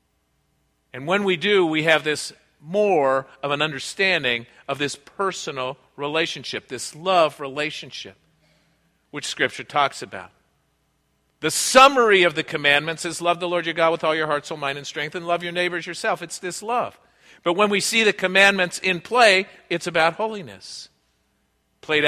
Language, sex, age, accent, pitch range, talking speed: English, male, 50-69, American, 145-185 Hz, 165 wpm